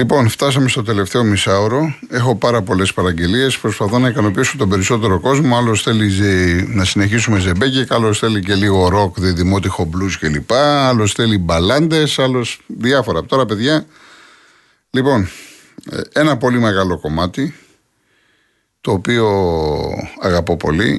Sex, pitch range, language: male, 90-120 Hz, Greek